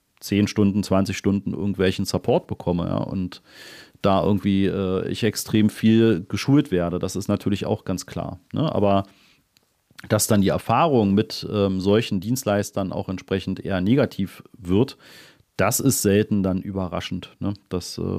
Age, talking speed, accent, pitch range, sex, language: 40-59, 140 wpm, German, 95-115 Hz, male, German